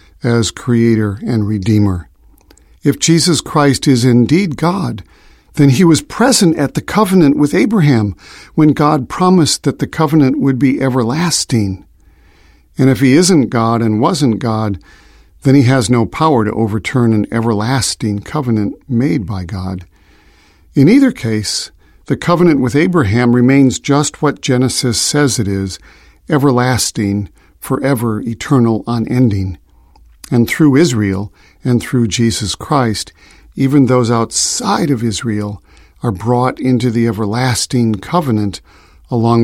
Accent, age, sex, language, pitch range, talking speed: American, 50-69, male, English, 105-145 Hz, 130 wpm